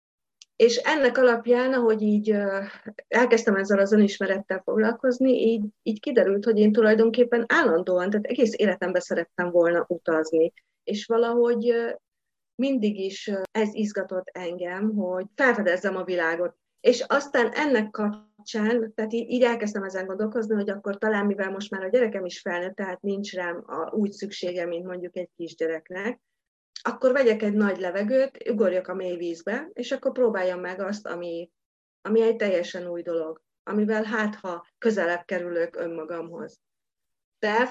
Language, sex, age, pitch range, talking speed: Hungarian, female, 30-49, 180-225 Hz, 140 wpm